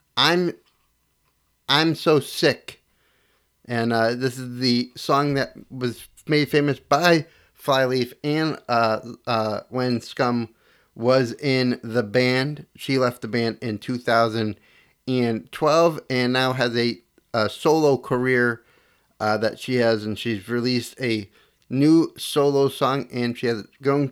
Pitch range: 120-145 Hz